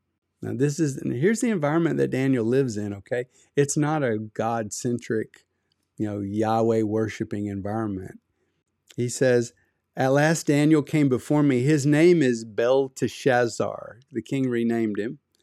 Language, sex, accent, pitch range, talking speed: English, male, American, 110-135 Hz, 135 wpm